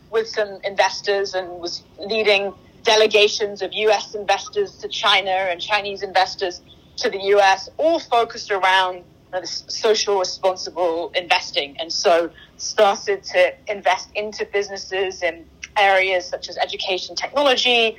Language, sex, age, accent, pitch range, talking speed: English, female, 20-39, British, 175-205 Hz, 125 wpm